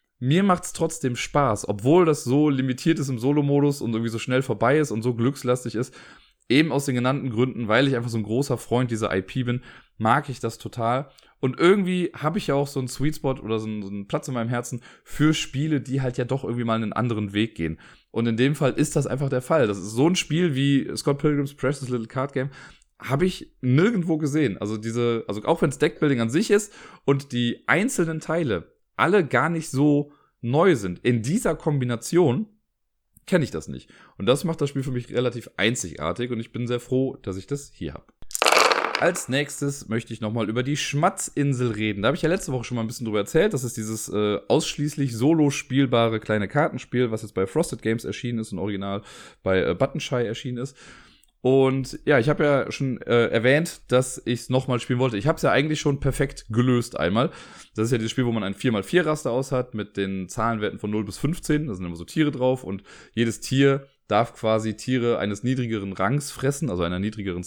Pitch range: 115-145 Hz